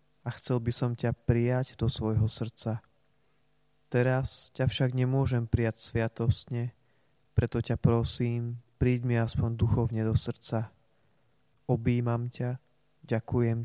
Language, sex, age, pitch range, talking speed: Slovak, male, 20-39, 115-130 Hz, 120 wpm